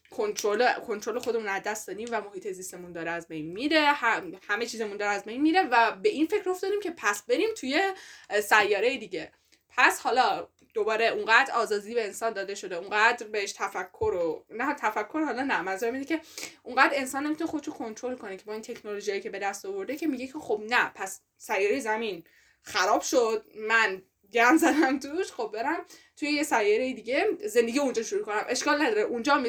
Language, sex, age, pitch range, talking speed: Persian, female, 10-29, 210-330 Hz, 185 wpm